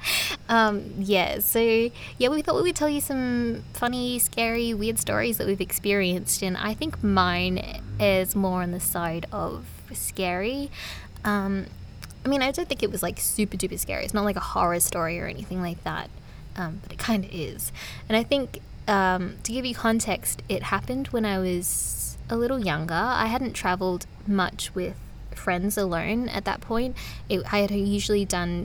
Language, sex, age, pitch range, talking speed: English, female, 20-39, 185-230 Hz, 180 wpm